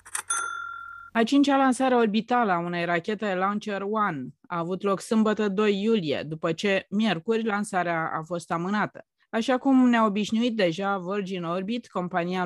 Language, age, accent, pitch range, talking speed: Romanian, 20-39, native, 170-225 Hz, 140 wpm